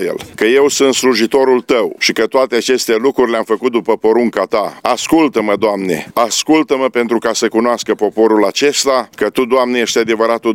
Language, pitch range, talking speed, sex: Romanian, 110-130 Hz, 165 wpm, male